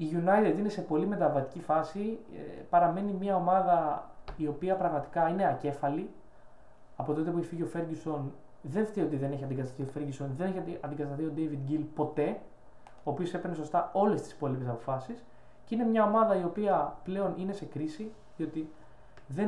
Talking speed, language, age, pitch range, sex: 175 wpm, Greek, 20-39, 150-210 Hz, male